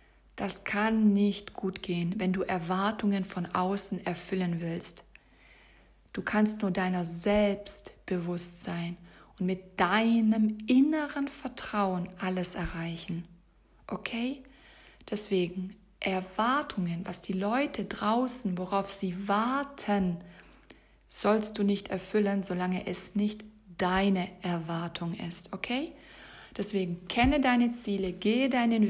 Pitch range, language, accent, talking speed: 180-215 Hz, German, German, 110 wpm